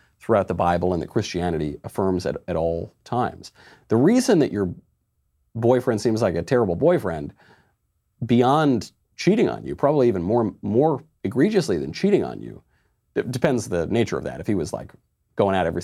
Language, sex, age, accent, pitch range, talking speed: English, male, 40-59, American, 90-115 Hz, 180 wpm